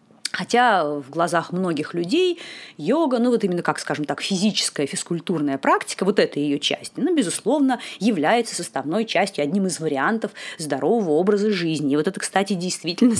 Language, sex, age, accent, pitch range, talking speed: Russian, female, 30-49, native, 155-210 Hz, 165 wpm